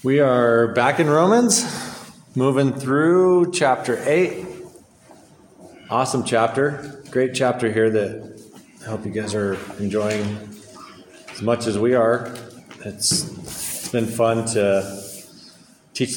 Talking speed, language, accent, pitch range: 120 wpm, English, American, 100-125 Hz